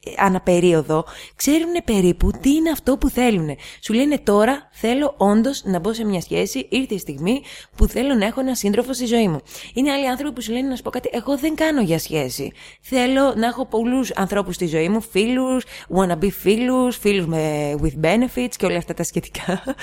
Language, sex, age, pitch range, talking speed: Greek, female, 20-39, 175-250 Hz, 195 wpm